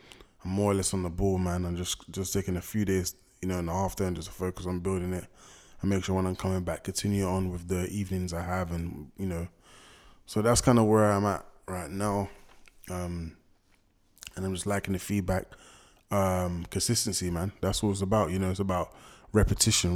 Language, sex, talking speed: English, male, 215 wpm